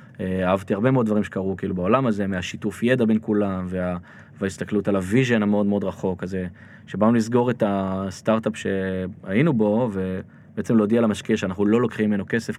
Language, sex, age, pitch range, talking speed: Hebrew, male, 20-39, 100-130 Hz, 155 wpm